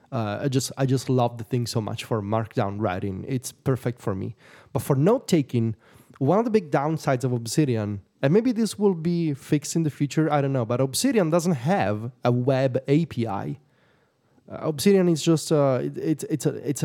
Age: 30-49